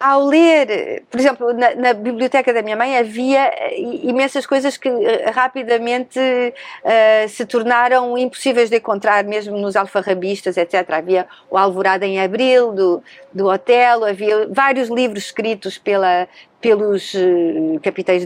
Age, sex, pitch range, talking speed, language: 50-69, female, 195-255 Hz, 125 wpm, Portuguese